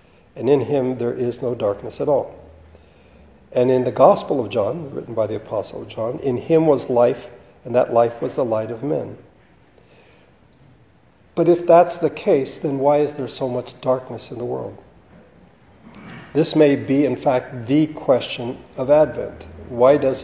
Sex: male